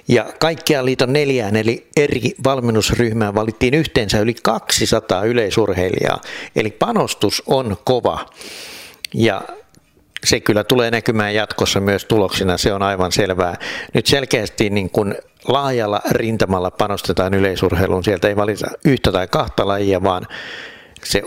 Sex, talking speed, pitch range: male, 125 wpm, 95-115 Hz